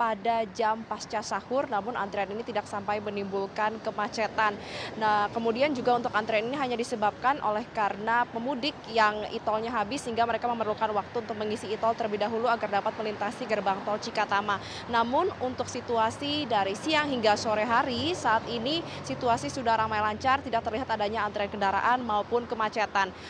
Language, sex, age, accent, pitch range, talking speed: Indonesian, female, 20-39, native, 215-260 Hz, 155 wpm